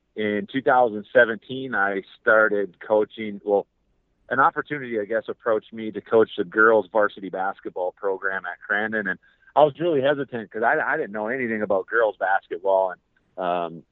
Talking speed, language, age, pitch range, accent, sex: 160 wpm, English, 30-49, 100-120 Hz, American, male